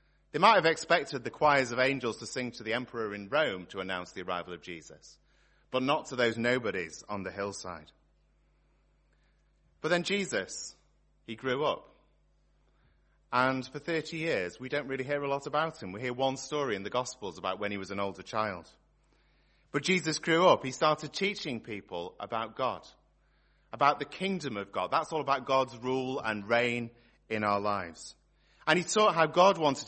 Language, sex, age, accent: English, male, 30-49, British